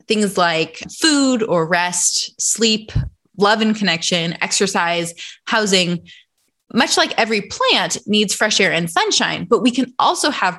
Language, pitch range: English, 170-230 Hz